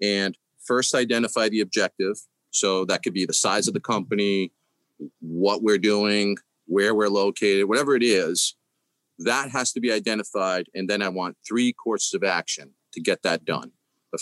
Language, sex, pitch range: English, male, 105-135 Hz